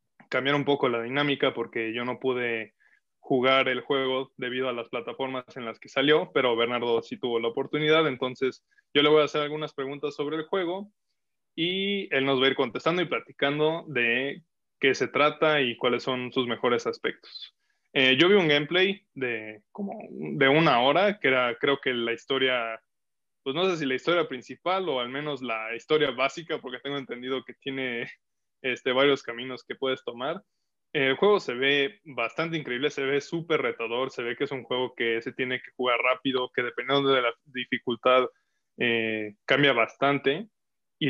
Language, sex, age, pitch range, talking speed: Spanish, male, 20-39, 125-155 Hz, 185 wpm